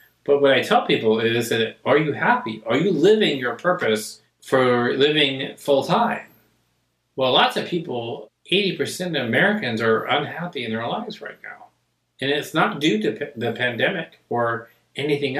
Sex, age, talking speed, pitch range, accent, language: male, 40-59, 170 wpm, 110-150 Hz, American, English